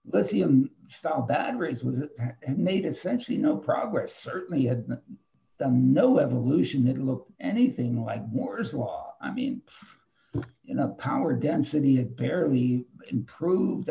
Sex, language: male, English